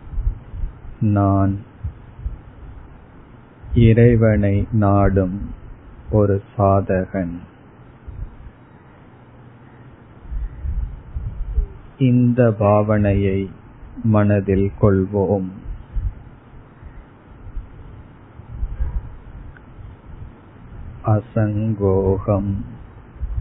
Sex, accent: male, native